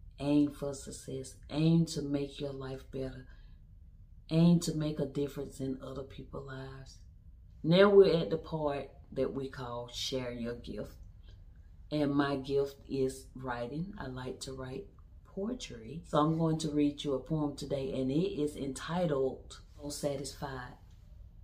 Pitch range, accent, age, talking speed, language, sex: 110-150 Hz, American, 40-59, 150 wpm, English, female